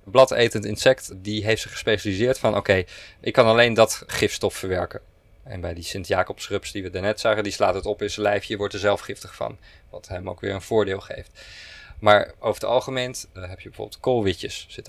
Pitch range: 95-115 Hz